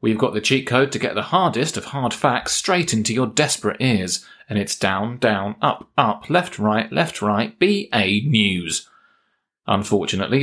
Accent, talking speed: British, 180 wpm